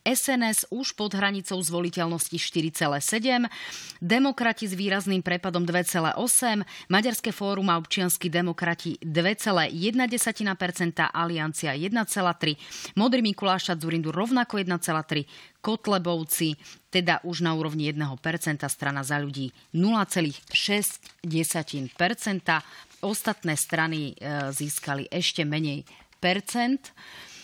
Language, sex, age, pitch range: Slovak, female, 30-49, 165-215 Hz